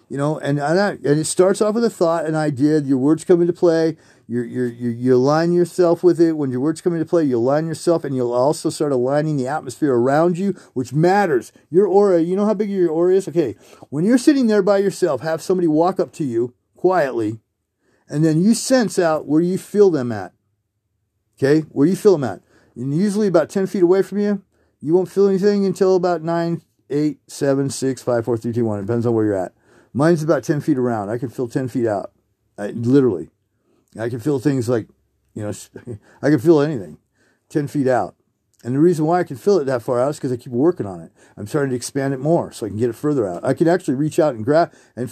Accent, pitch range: American, 125-175 Hz